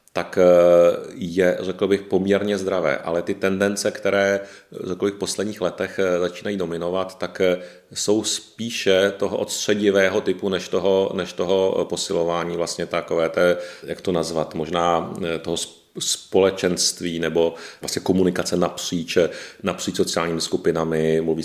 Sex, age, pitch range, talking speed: male, 40-59, 85-95 Hz, 130 wpm